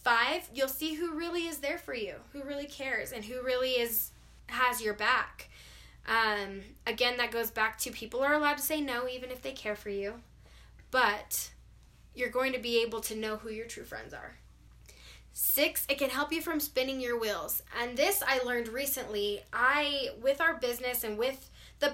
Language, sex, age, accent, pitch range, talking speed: English, female, 10-29, American, 225-275 Hz, 195 wpm